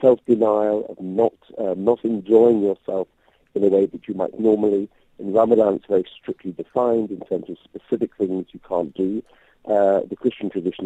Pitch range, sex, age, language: 95-120 Hz, male, 50-69, English